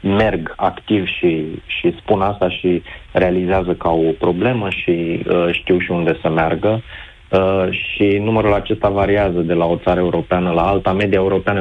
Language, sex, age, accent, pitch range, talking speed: Romanian, male, 30-49, native, 85-95 Hz, 165 wpm